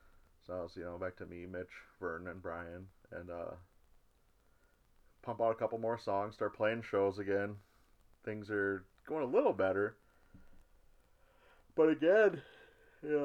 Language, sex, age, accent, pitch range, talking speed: English, male, 30-49, American, 90-105 Hz, 140 wpm